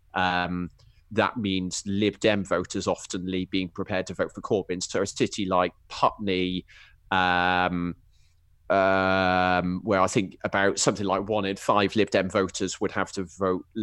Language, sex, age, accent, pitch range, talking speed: English, male, 30-49, British, 90-110 Hz, 155 wpm